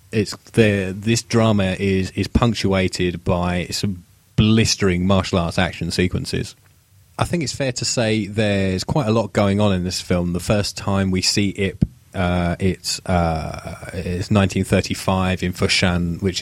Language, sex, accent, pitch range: English, male, British, 90-100 Hz